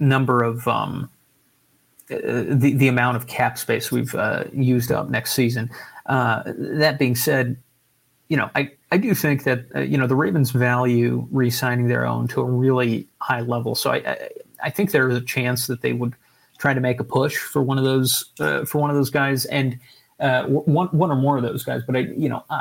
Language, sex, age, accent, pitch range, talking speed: English, male, 30-49, American, 120-140 Hz, 215 wpm